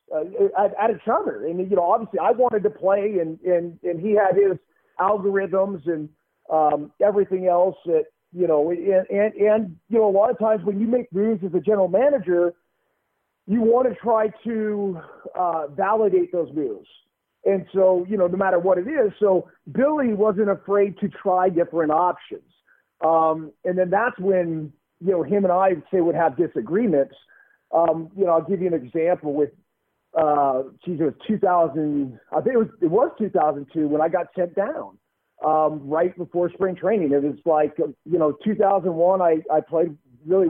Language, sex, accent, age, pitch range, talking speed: English, male, American, 40-59, 160-205 Hz, 185 wpm